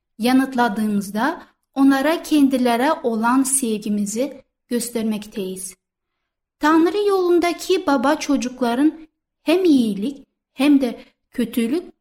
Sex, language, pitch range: female, Turkish, 220-280 Hz